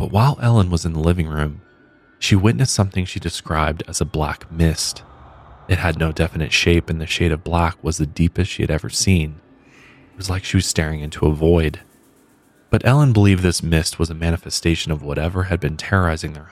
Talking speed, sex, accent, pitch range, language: 205 wpm, male, American, 80-95 Hz, English